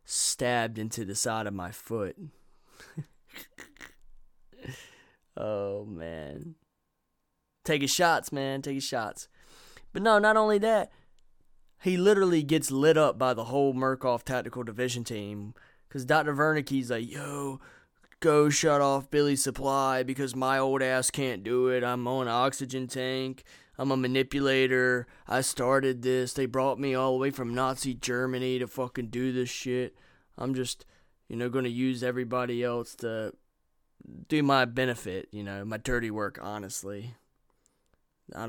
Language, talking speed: English, 150 wpm